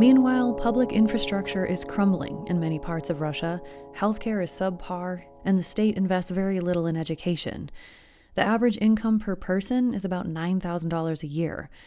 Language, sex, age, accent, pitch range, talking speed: English, female, 30-49, American, 165-210 Hz, 155 wpm